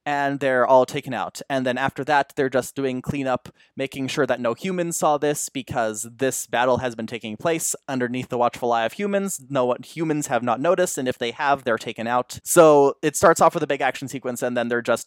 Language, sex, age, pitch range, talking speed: English, male, 20-39, 125-160 Hz, 230 wpm